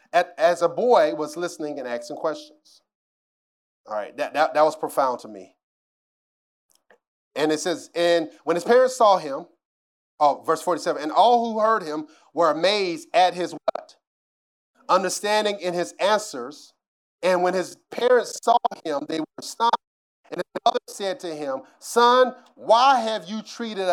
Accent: American